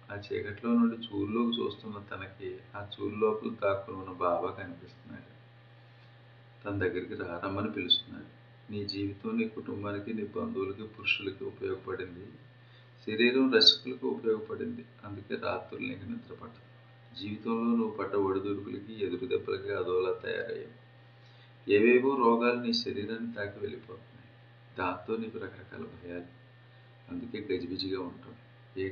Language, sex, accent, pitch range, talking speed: Telugu, male, native, 100-120 Hz, 95 wpm